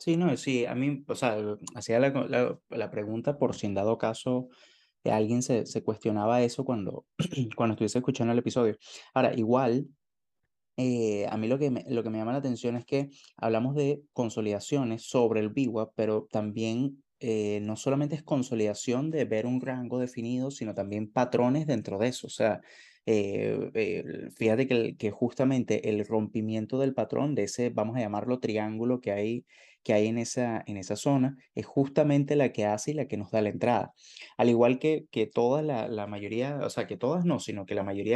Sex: male